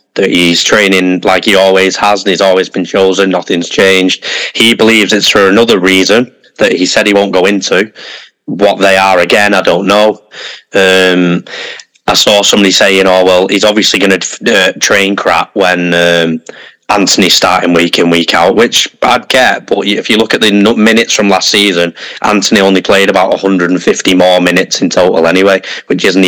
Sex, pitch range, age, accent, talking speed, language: male, 90-105 Hz, 20-39, British, 190 wpm, English